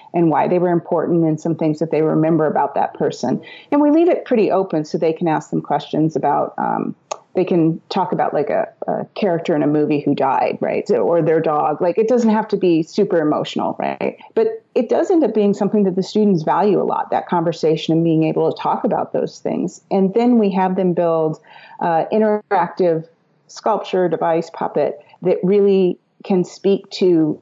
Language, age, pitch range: English, 30-49, 160-200 Hz